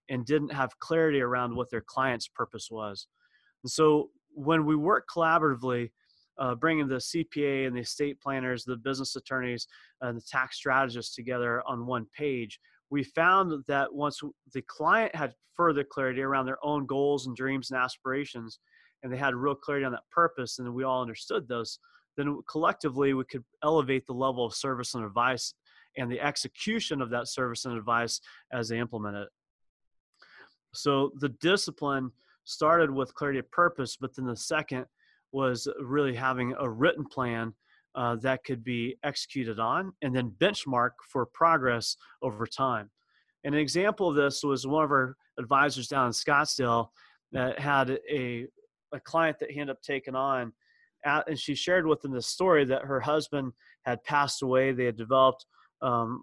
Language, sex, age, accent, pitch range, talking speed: English, male, 30-49, American, 125-145 Hz, 170 wpm